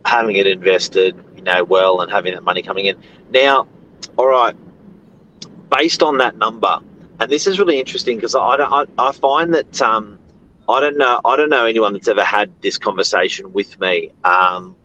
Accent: Australian